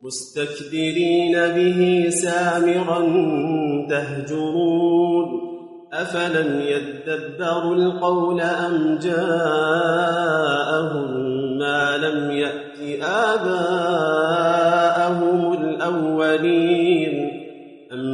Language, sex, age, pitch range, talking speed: Arabic, male, 40-59, 155-175 Hz, 50 wpm